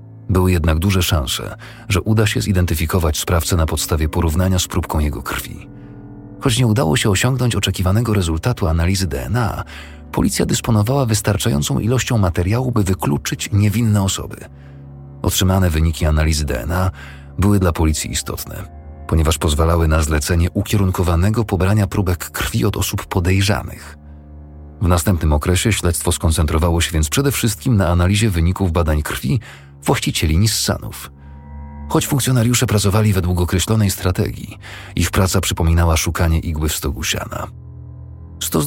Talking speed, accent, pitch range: 130 wpm, native, 85-110 Hz